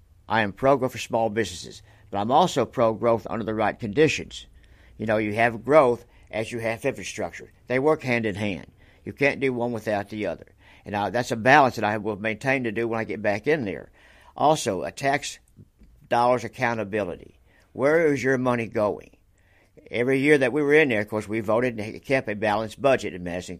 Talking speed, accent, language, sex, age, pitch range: 195 wpm, American, English, male, 60-79, 105-125 Hz